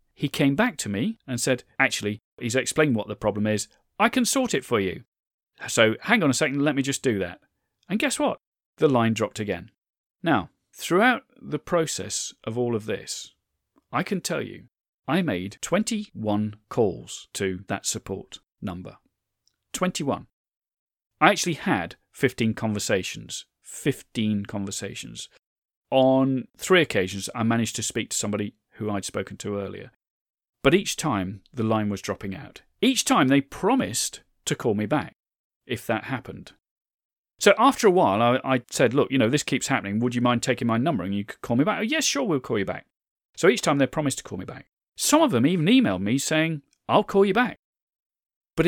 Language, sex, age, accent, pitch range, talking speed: English, male, 40-59, British, 105-155 Hz, 185 wpm